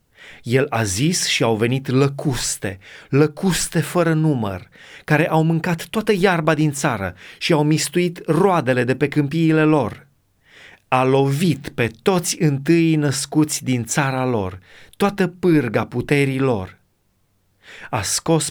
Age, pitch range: 30-49, 115-155 Hz